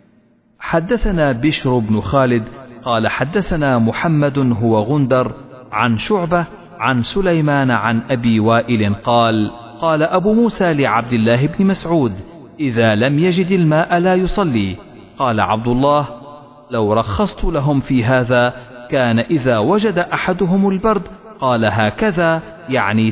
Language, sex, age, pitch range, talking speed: Arabic, male, 40-59, 120-175 Hz, 120 wpm